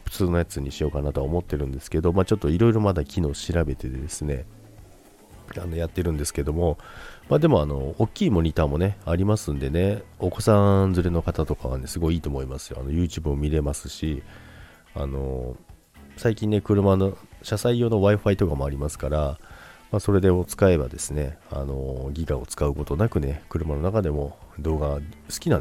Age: 40-59